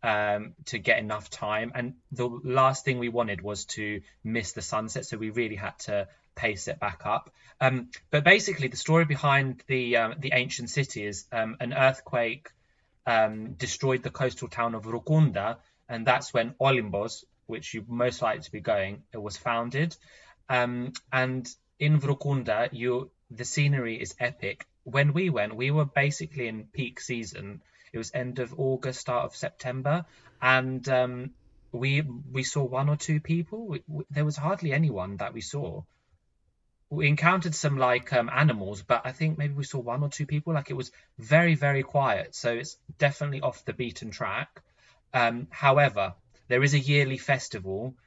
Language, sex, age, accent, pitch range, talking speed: Greek, male, 20-39, British, 115-140 Hz, 175 wpm